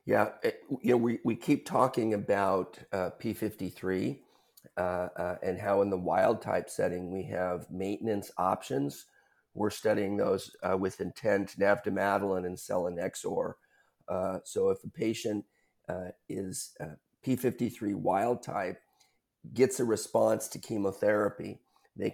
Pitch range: 95-120 Hz